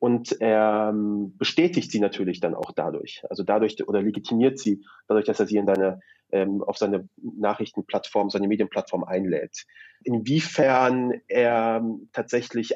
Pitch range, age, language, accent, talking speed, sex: 100-120 Hz, 30-49, German, German, 135 wpm, male